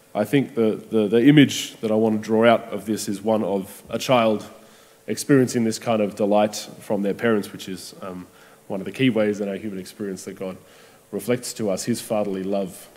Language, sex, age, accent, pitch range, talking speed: English, male, 20-39, Australian, 100-120 Hz, 215 wpm